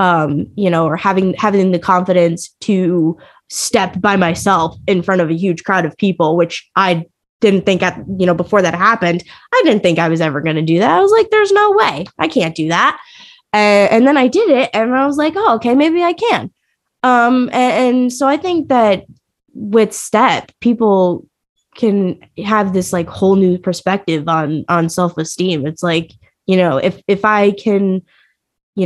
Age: 20-39